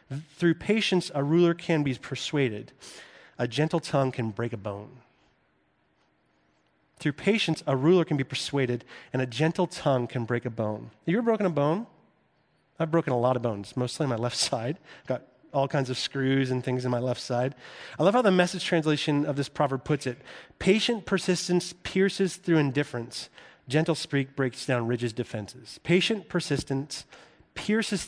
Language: English